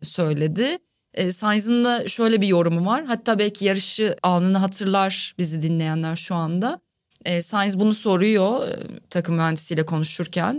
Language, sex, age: Turkish, female, 30-49